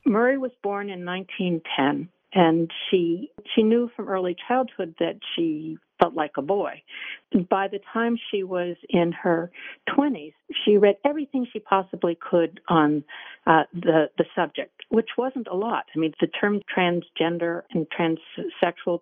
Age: 50-69